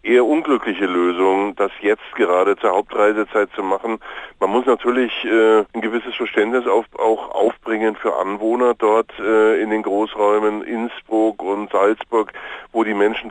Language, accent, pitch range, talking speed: German, German, 100-115 Hz, 150 wpm